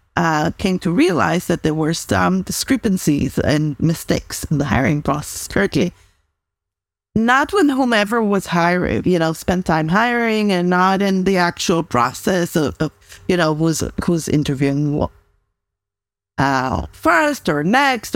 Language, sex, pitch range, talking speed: English, female, 145-195 Hz, 140 wpm